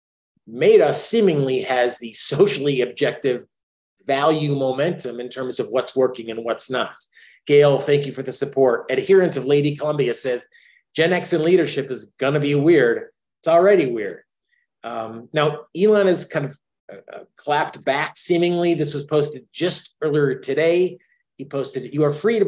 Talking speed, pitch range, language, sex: 160 wpm, 130-175 Hz, English, male